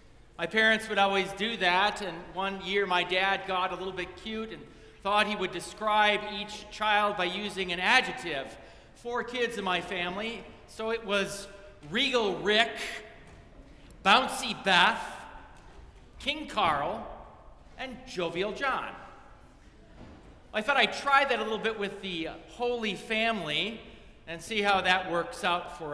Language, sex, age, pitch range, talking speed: English, male, 40-59, 190-245 Hz, 145 wpm